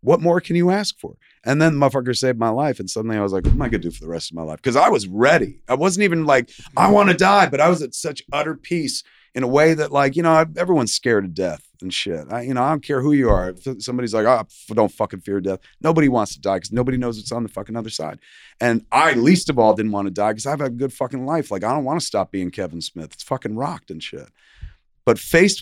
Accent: American